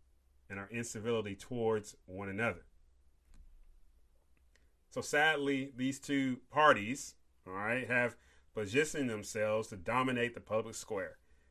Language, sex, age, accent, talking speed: English, male, 30-49, American, 110 wpm